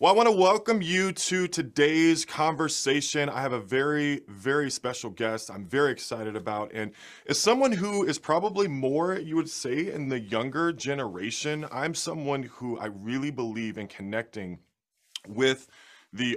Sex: male